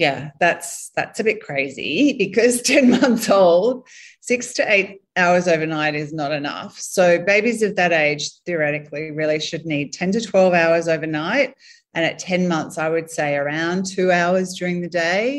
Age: 30-49